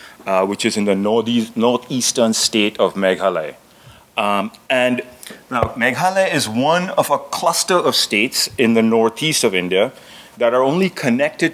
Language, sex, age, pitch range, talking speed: English, male, 30-49, 100-125 Hz, 155 wpm